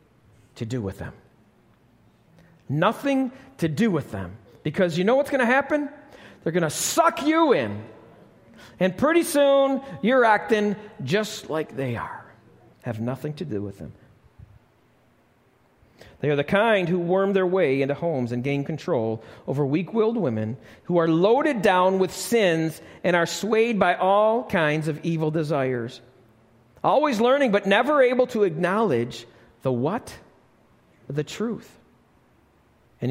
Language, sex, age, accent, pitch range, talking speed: English, male, 50-69, American, 125-210 Hz, 145 wpm